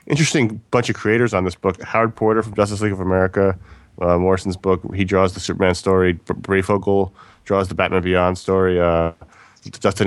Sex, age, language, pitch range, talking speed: male, 30-49, English, 85-105 Hz, 185 wpm